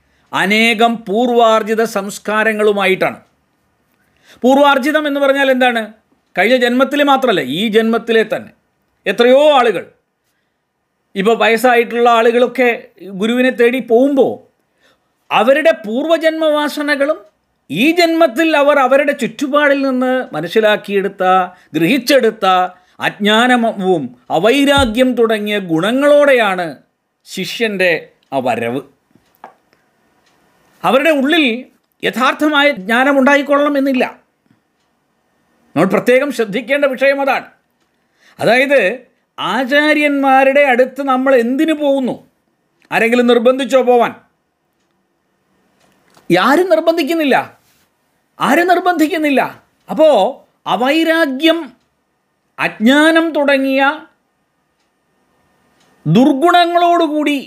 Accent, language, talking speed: native, Malayalam, 70 wpm